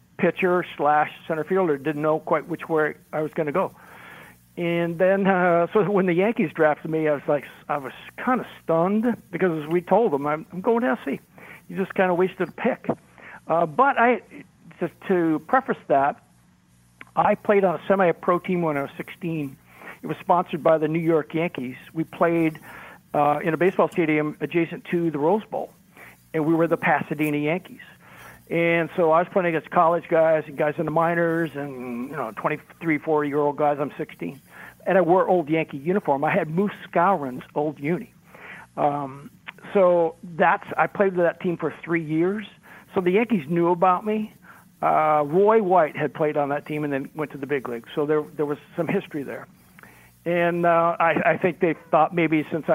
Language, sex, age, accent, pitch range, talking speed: English, male, 60-79, American, 150-180 Hz, 195 wpm